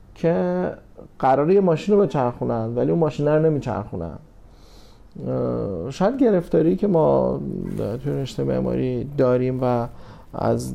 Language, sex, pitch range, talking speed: Persian, male, 115-140 Hz, 115 wpm